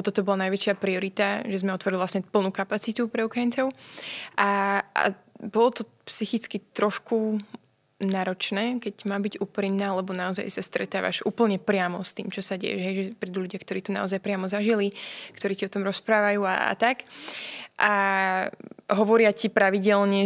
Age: 20-39